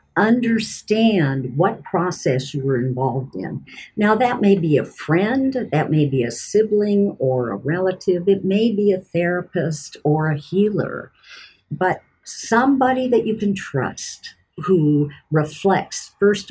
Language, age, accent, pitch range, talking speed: English, 50-69, American, 145-210 Hz, 140 wpm